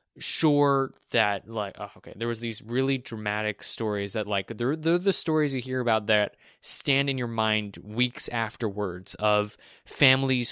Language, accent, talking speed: English, American, 165 wpm